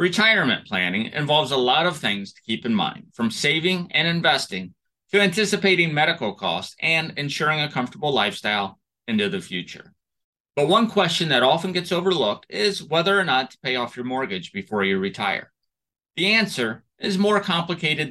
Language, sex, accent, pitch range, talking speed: English, male, American, 130-195 Hz, 170 wpm